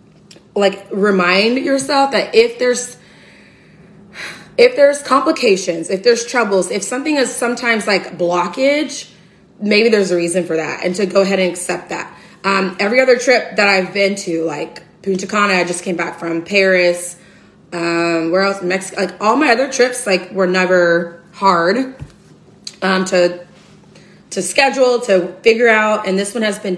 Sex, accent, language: female, American, English